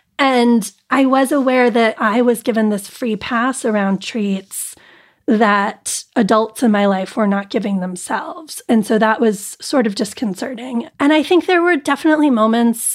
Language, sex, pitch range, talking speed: English, female, 215-255 Hz, 165 wpm